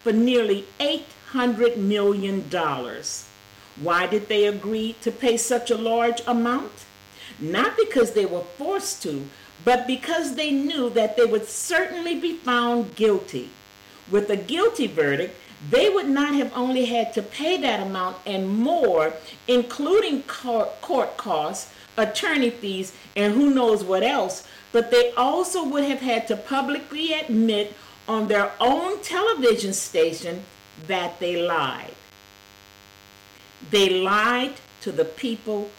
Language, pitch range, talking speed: English, 180-260 Hz, 135 wpm